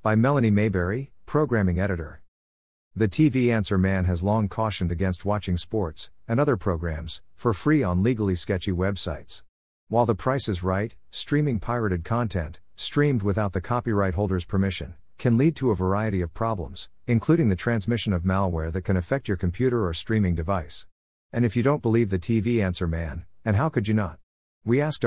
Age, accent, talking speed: 50-69, American, 175 wpm